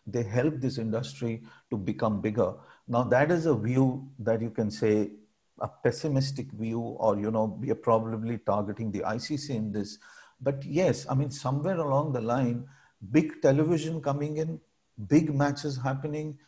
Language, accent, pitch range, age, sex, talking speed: English, Indian, 115-140 Hz, 50-69, male, 165 wpm